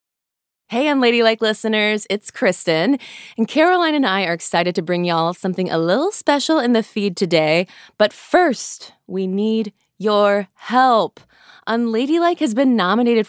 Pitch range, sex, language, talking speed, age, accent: 185-250 Hz, female, English, 150 wpm, 20-39, American